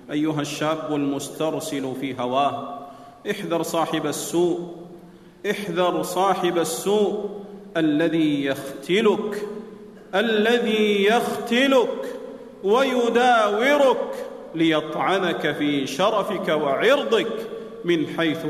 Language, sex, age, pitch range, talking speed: Arabic, male, 40-59, 170-245 Hz, 70 wpm